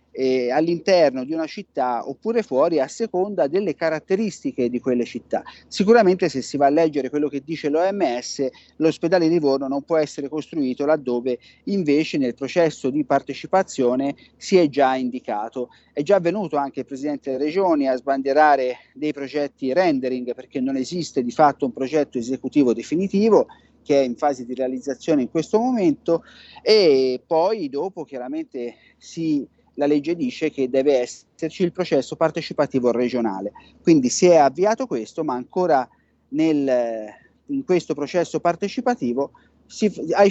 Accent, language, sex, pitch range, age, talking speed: native, Italian, male, 130-180 Hz, 40-59, 145 wpm